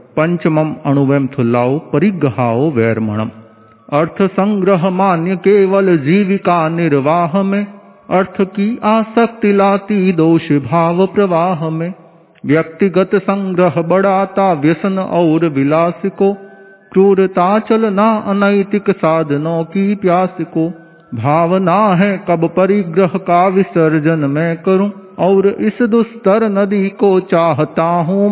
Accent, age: native, 50-69